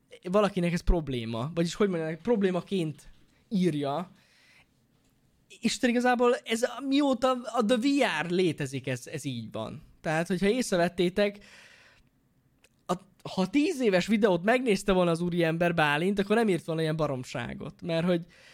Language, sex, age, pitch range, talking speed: Hungarian, male, 20-39, 145-205 Hz, 135 wpm